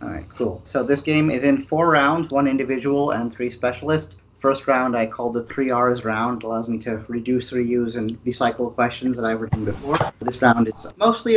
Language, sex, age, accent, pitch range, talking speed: English, male, 30-49, American, 110-140 Hz, 205 wpm